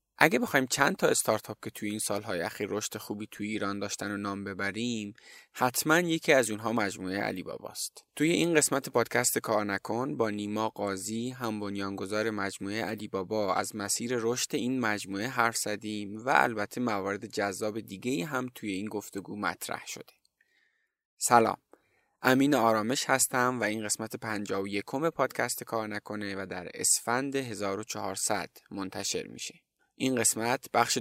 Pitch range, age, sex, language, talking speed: 100-120 Hz, 20-39, male, Persian, 150 wpm